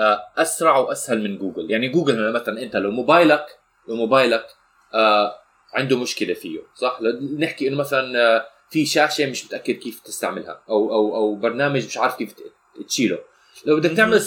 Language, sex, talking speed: Arabic, male, 160 wpm